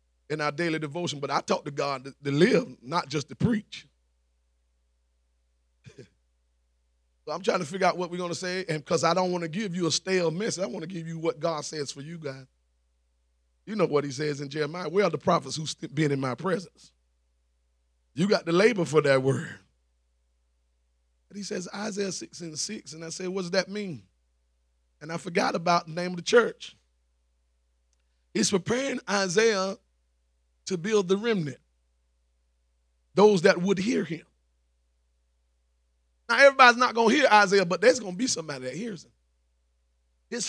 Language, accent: English, American